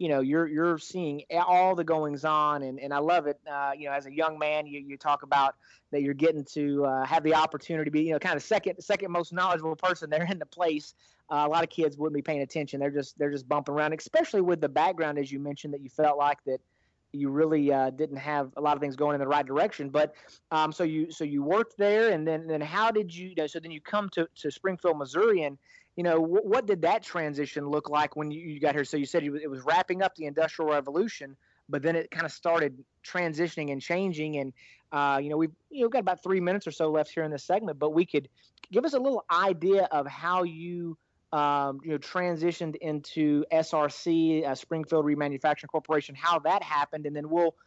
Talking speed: 240 wpm